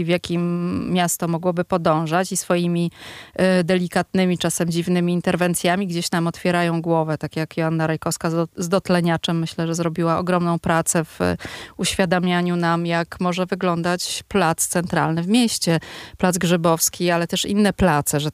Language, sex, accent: Polish, female, native